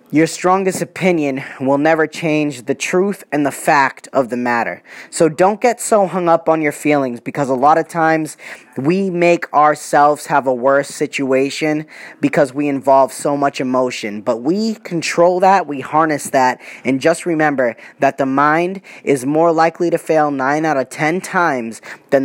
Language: English